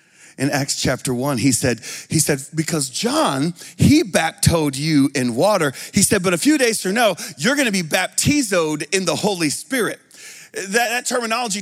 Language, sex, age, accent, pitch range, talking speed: English, male, 40-59, American, 150-205 Hz, 180 wpm